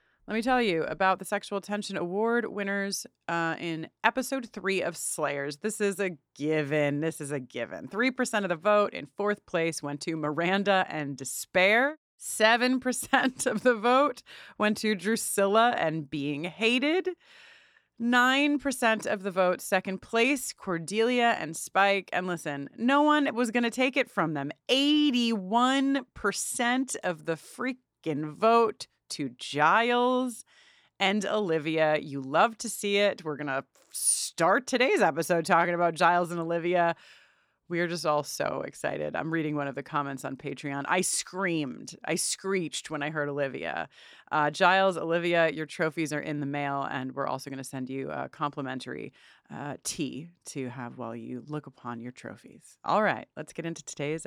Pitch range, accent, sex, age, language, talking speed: 150-230 Hz, American, female, 30-49, English, 165 wpm